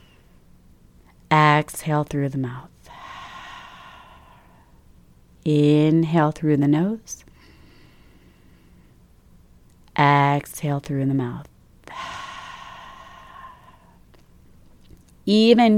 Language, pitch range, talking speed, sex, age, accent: English, 150-195 Hz, 50 wpm, female, 30-49, American